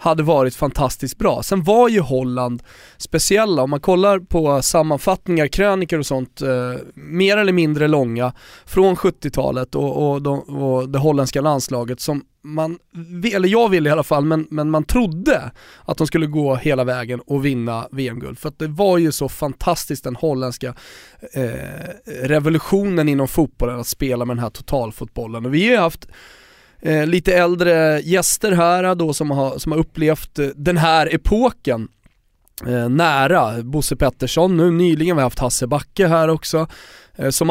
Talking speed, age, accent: 160 wpm, 20-39, native